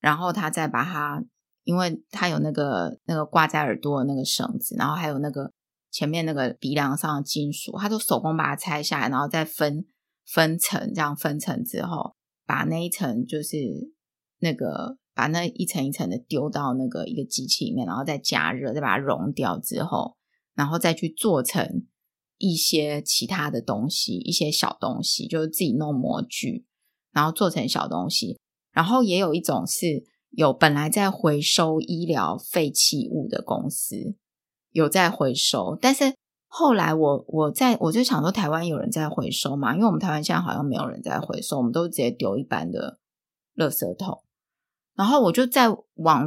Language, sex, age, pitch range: Chinese, female, 20-39, 150-215 Hz